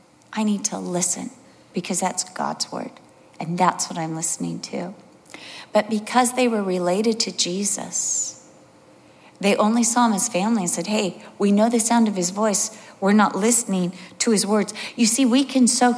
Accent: American